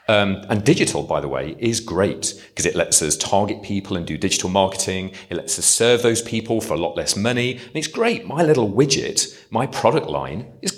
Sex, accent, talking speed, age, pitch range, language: male, British, 215 wpm, 40-59, 90-120 Hz, English